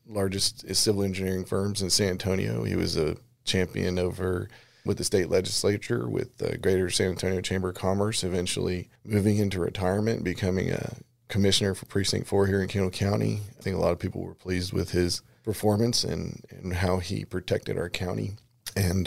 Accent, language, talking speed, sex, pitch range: American, English, 185 wpm, male, 95-110 Hz